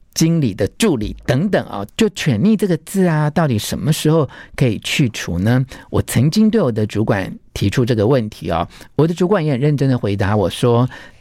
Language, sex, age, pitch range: Chinese, male, 50-69, 110-155 Hz